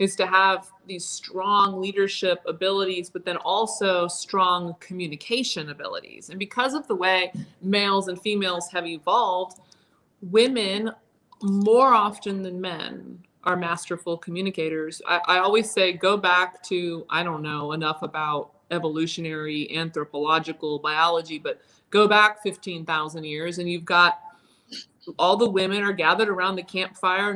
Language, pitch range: English, 175-205 Hz